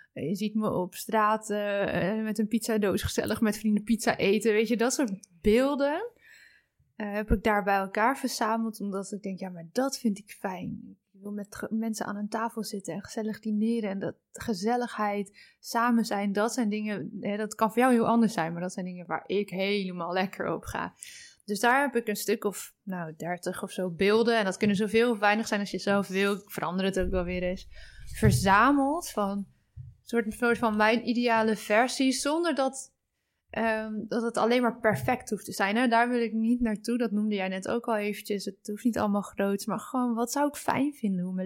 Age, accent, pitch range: 20-39, Dutch, 200-230 Hz